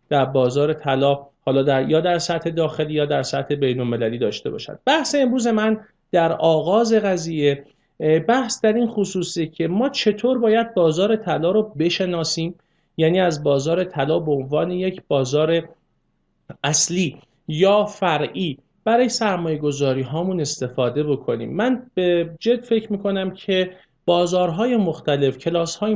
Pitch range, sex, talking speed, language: 150-215 Hz, male, 135 wpm, Persian